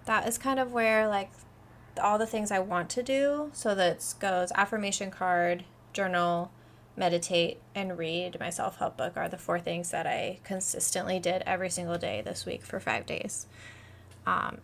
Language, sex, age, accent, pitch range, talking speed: English, female, 20-39, American, 180-220 Hz, 175 wpm